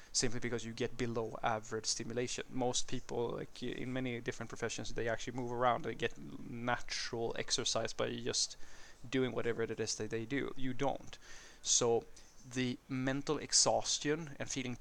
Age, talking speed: 20-39, 160 wpm